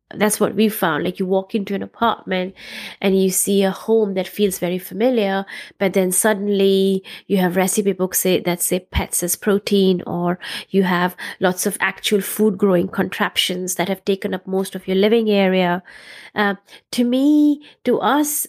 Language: English